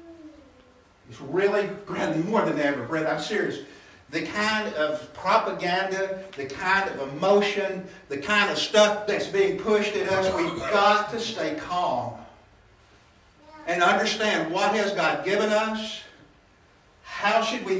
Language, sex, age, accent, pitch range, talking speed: English, male, 60-79, American, 140-215 Hz, 135 wpm